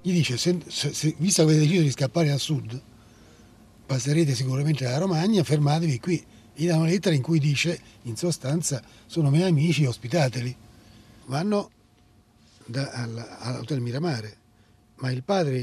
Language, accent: Italian, native